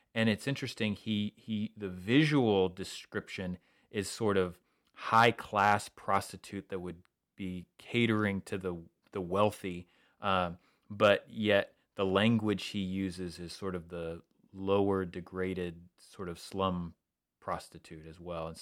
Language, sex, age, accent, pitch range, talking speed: English, male, 30-49, American, 90-105 Hz, 135 wpm